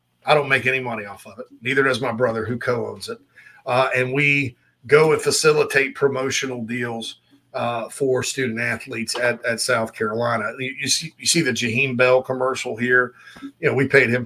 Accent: American